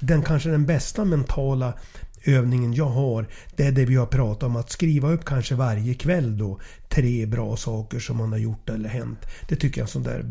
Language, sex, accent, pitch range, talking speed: English, male, Swedish, 120-160 Hz, 215 wpm